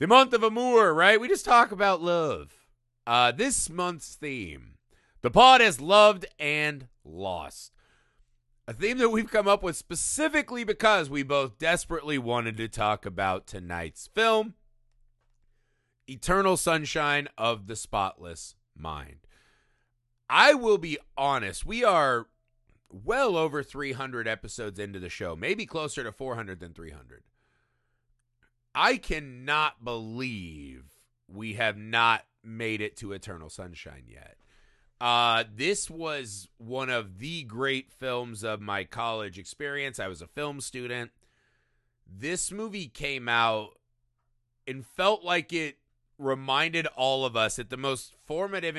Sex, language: male, English